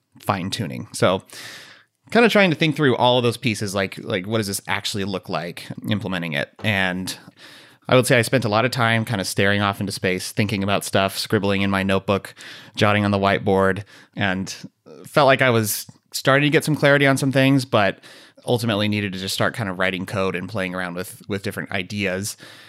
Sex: male